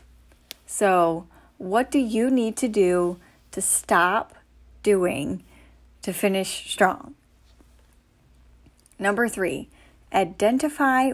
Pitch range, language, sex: 170-215 Hz, English, female